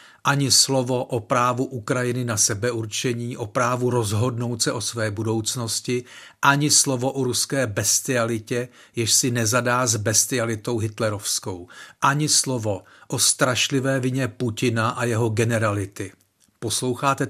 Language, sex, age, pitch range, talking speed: Czech, male, 40-59, 115-135 Hz, 120 wpm